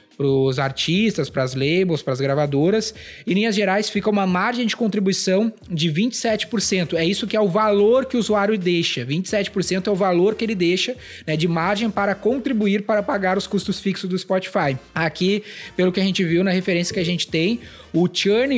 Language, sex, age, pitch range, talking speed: Portuguese, male, 20-39, 170-210 Hz, 200 wpm